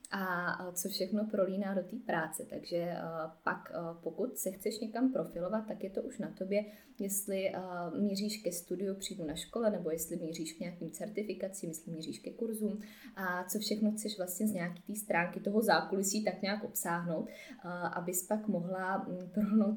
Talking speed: 175 wpm